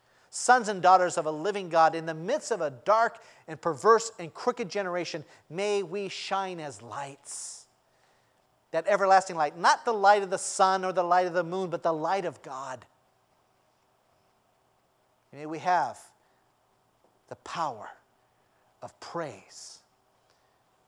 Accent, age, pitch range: American, 40-59, 135-195 Hz